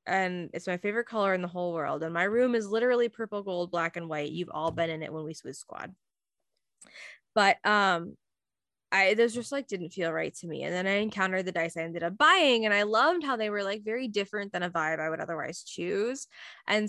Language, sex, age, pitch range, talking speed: English, female, 10-29, 180-235 Hz, 235 wpm